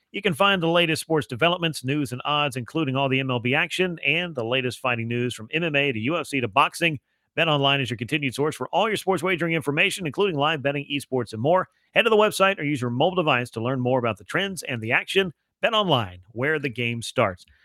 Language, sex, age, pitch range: English, male, 40-59, 130-165 Hz